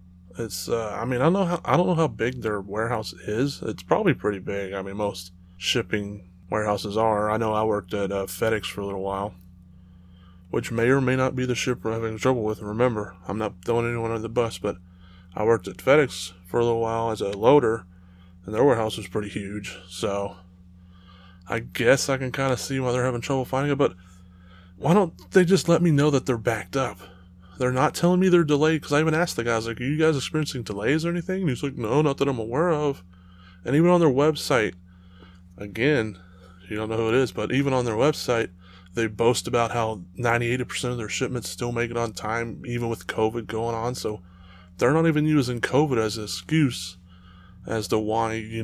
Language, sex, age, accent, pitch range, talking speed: English, male, 20-39, American, 90-130 Hz, 220 wpm